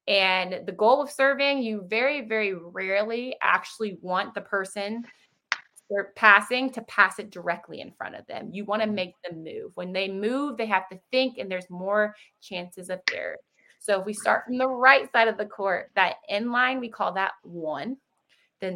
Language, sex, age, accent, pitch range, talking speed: English, female, 20-39, American, 185-235 Hz, 190 wpm